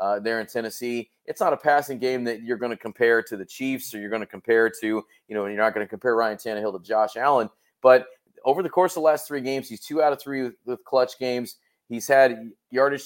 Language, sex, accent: English, male, American